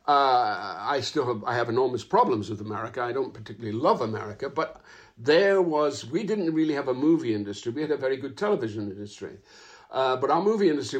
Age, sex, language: 60-79, male, English